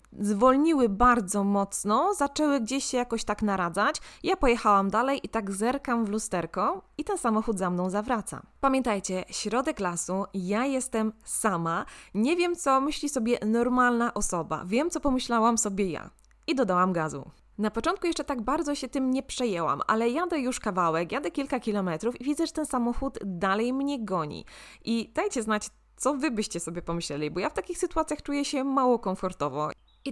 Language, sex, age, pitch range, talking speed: Polish, female, 20-39, 210-270 Hz, 170 wpm